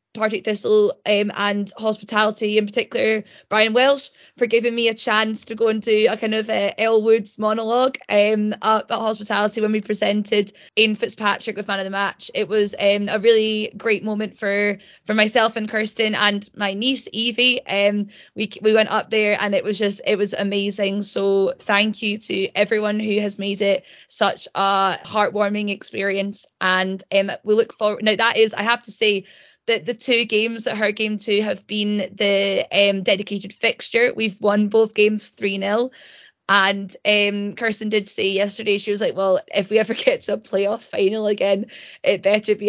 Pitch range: 200-225 Hz